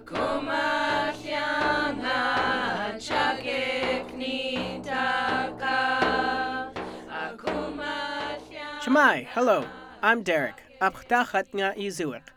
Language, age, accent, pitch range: English, 30-49, American, 155-235 Hz